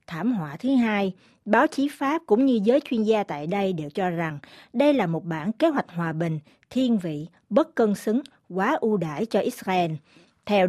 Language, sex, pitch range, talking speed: Vietnamese, female, 175-245 Hz, 200 wpm